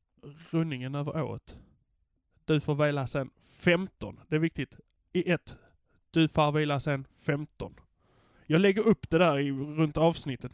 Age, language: 20-39, English